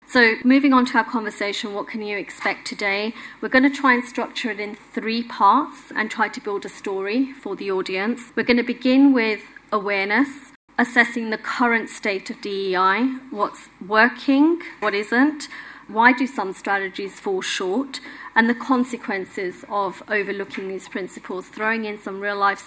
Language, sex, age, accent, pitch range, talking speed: English, female, 30-49, British, 205-255 Hz, 165 wpm